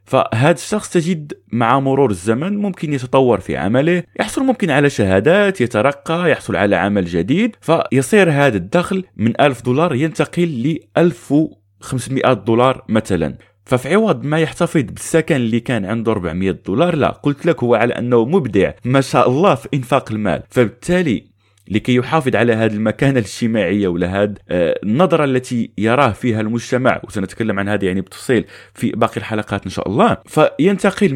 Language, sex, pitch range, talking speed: Arabic, male, 105-155 Hz, 150 wpm